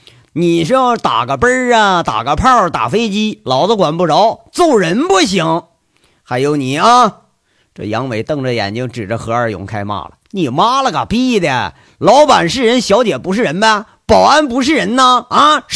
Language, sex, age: Chinese, male, 40-59